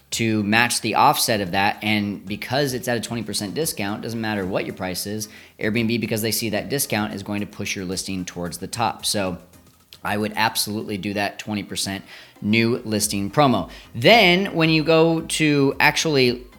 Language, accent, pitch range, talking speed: English, American, 105-140 Hz, 190 wpm